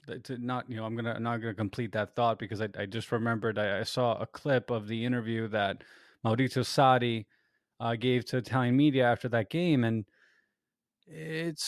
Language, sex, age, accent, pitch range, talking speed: English, male, 20-39, American, 120-150 Hz, 200 wpm